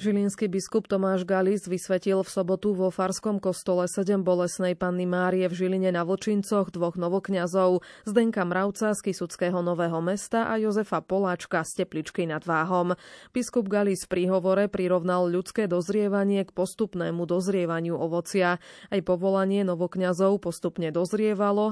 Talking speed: 135 wpm